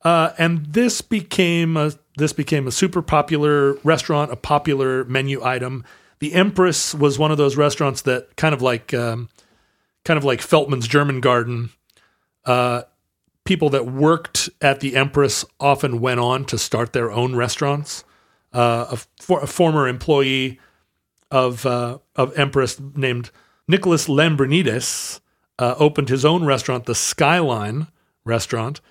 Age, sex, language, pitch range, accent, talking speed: 40-59, male, English, 125-150 Hz, American, 145 wpm